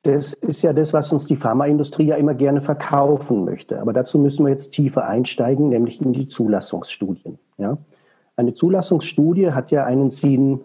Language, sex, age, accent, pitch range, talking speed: German, male, 50-69, German, 120-160 Hz, 170 wpm